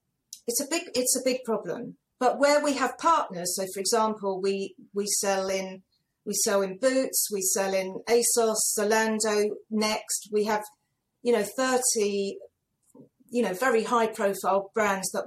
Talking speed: 160 wpm